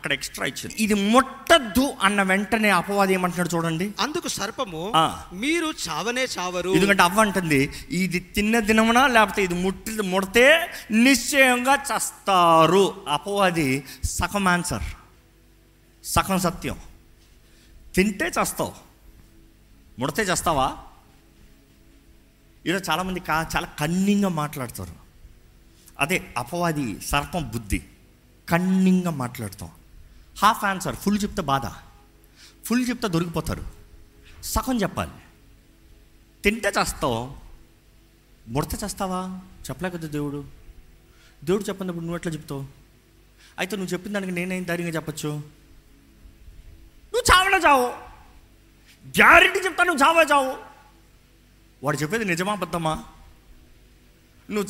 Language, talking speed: Telugu, 95 wpm